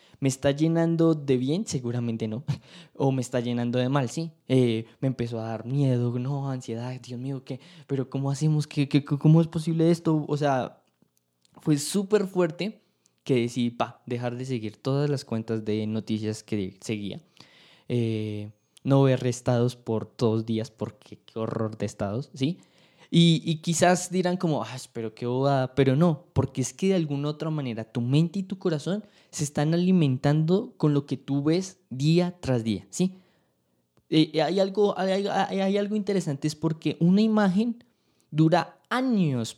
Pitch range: 120-165 Hz